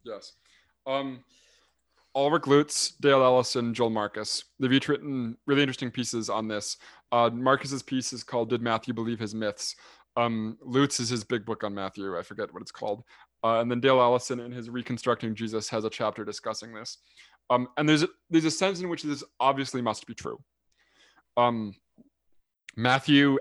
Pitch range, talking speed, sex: 120-155 Hz, 175 wpm, male